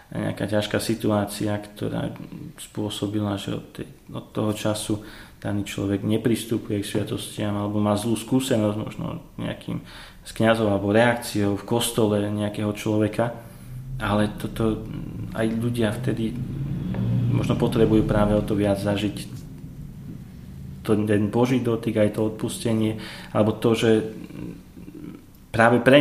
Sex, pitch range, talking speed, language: male, 105-115 Hz, 120 wpm, Slovak